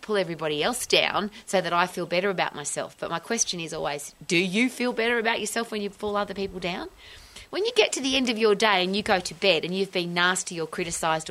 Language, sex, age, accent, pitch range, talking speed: English, female, 30-49, Australian, 160-220 Hz, 255 wpm